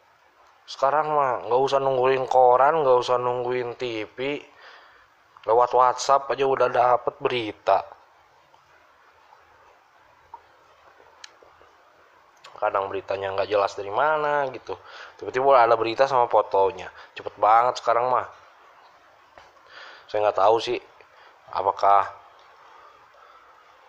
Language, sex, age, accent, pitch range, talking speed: Indonesian, male, 20-39, native, 100-135 Hz, 95 wpm